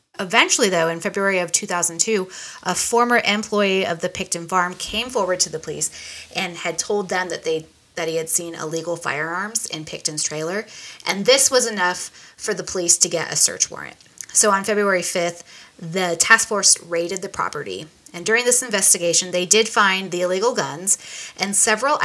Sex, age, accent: female, 20-39, American